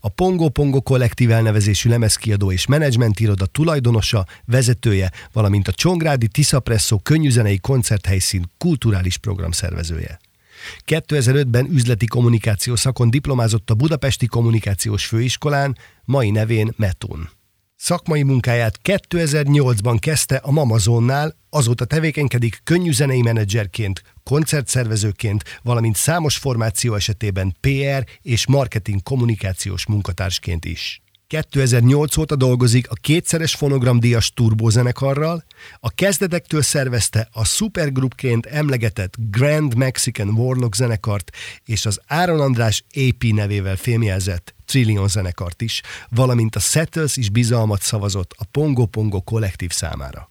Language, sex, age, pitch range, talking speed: Hungarian, male, 50-69, 105-140 Hz, 105 wpm